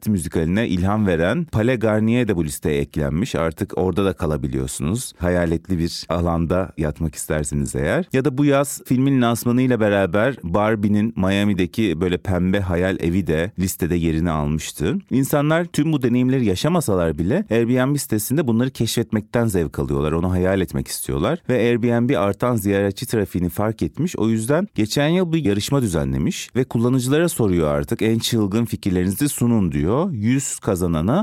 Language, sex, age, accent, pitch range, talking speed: Turkish, male, 40-59, native, 85-120 Hz, 150 wpm